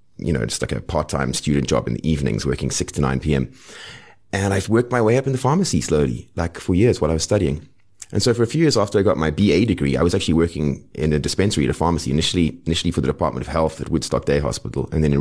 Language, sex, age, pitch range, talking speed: English, male, 30-49, 75-100 Hz, 270 wpm